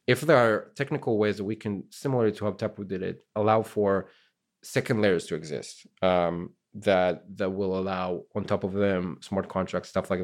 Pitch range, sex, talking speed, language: 95-110 Hz, male, 195 wpm, English